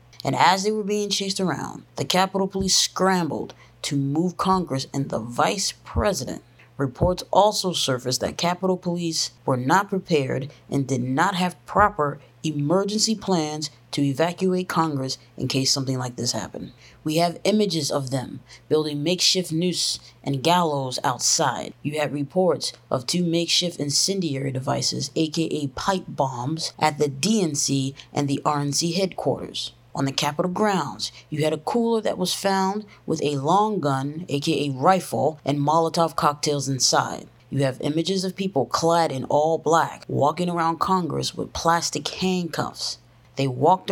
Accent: American